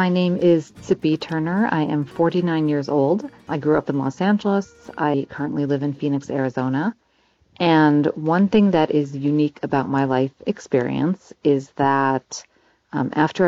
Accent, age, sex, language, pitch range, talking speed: American, 40-59, female, English, 145-180 Hz, 160 wpm